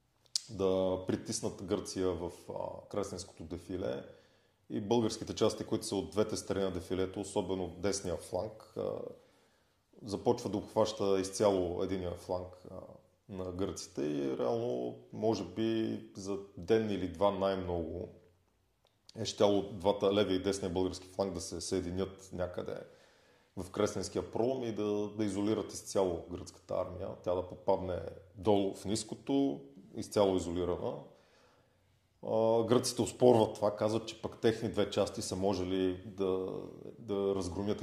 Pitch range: 90-110 Hz